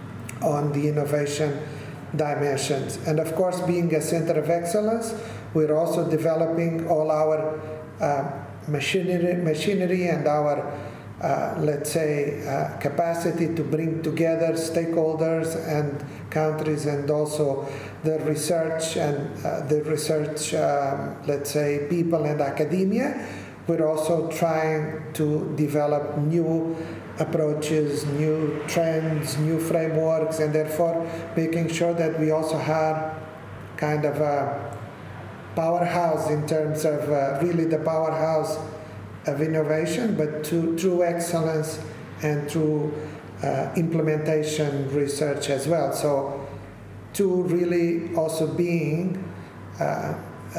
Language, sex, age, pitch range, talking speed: English, male, 50-69, 150-165 Hz, 115 wpm